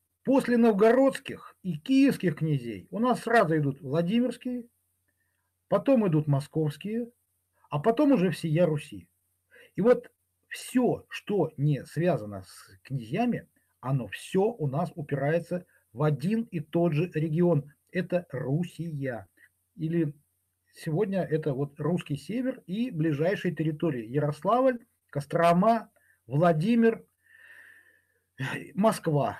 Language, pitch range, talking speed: Russian, 140-190 Hz, 105 wpm